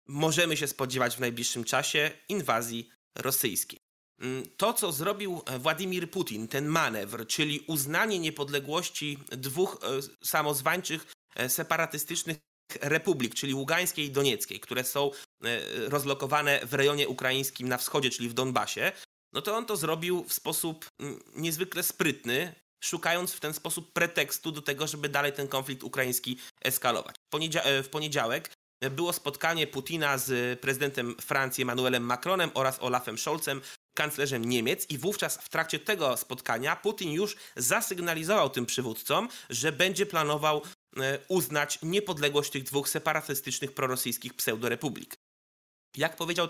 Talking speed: 125 wpm